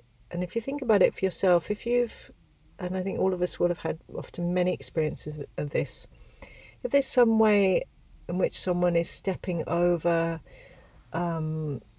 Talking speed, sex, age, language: 175 wpm, female, 40-59, English